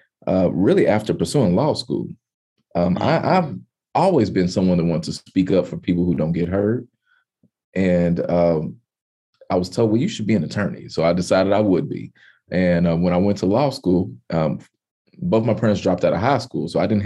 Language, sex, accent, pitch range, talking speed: English, male, American, 90-110 Hz, 210 wpm